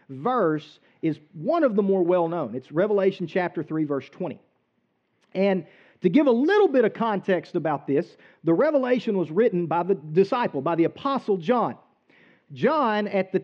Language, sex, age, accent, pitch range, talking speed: English, male, 40-59, American, 165-225 Hz, 170 wpm